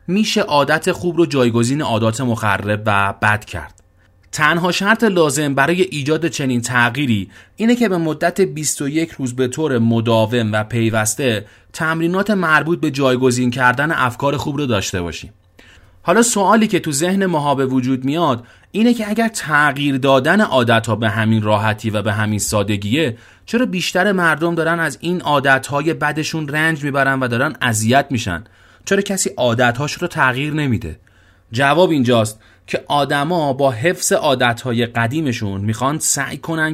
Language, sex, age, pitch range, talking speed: Persian, male, 30-49, 110-155 Hz, 155 wpm